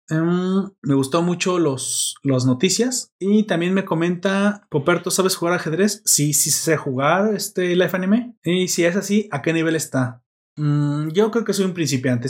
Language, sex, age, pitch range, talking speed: Spanish, male, 30-49, 135-175 Hz, 180 wpm